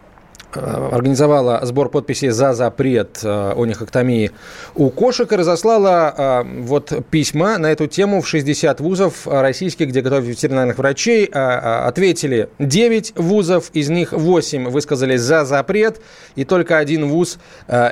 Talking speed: 145 wpm